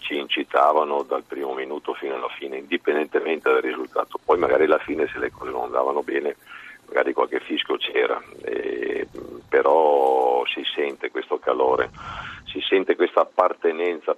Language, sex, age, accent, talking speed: Italian, male, 50-69, native, 145 wpm